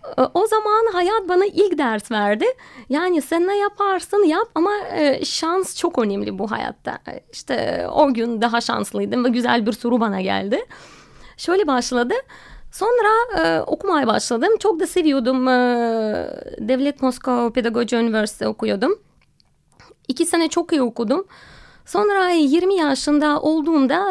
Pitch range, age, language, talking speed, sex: 240-360 Hz, 30-49, Turkish, 125 wpm, female